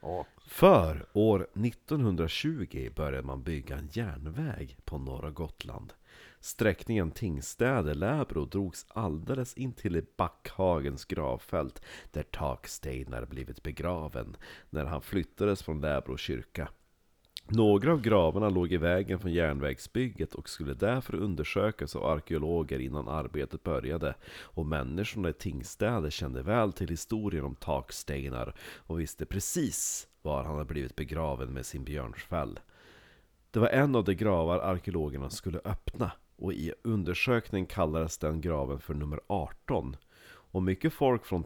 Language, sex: Swedish, male